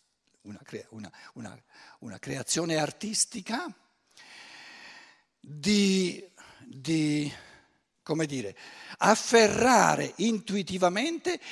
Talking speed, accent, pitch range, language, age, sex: 65 wpm, native, 130-210 Hz, Italian, 60-79, male